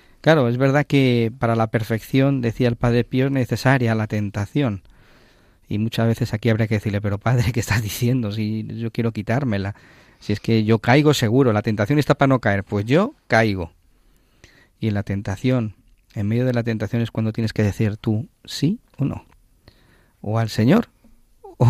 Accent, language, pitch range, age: Spanish, Spanish, 105-120 Hz, 40-59